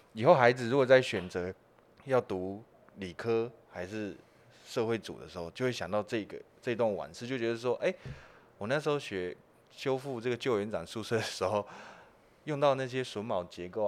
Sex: male